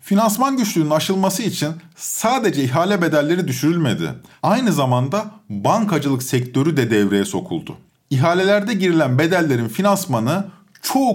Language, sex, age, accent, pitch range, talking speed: Turkish, male, 50-69, native, 135-195 Hz, 110 wpm